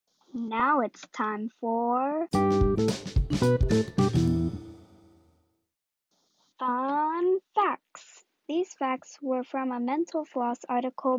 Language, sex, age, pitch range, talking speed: English, female, 20-39, 245-310 Hz, 75 wpm